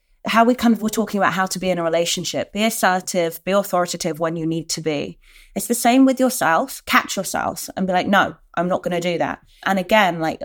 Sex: female